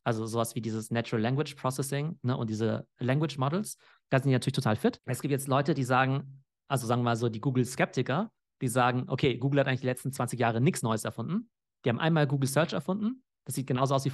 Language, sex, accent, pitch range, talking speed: German, male, German, 120-145 Hz, 230 wpm